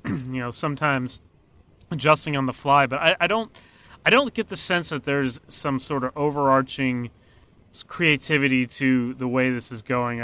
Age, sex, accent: 30-49, male, American